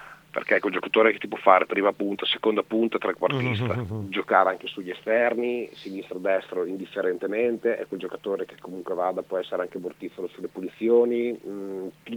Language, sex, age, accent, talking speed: Italian, male, 40-59, native, 165 wpm